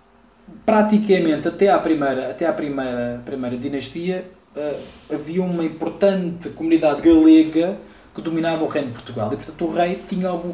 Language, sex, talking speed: Portuguese, male, 150 wpm